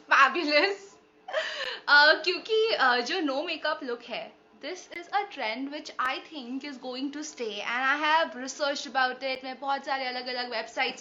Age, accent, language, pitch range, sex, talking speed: 20-39, native, Hindi, 255-345 Hz, female, 155 wpm